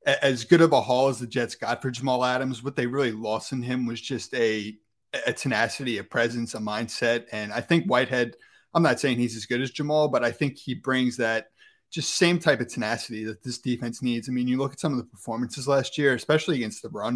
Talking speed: 240 wpm